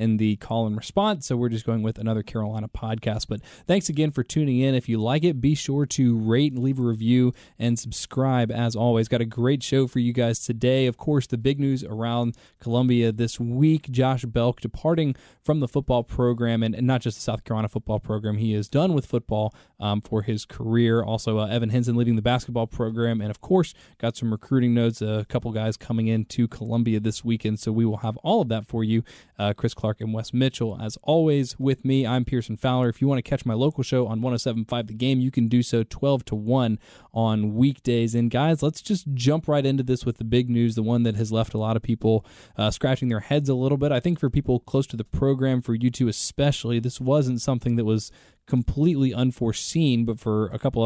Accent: American